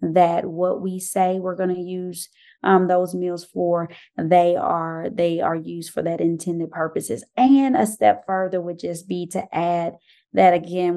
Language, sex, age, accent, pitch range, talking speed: English, female, 20-39, American, 170-190 Hz, 170 wpm